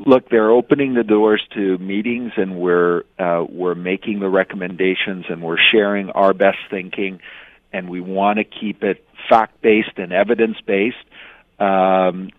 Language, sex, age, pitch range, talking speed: English, male, 50-69, 95-115 Hz, 145 wpm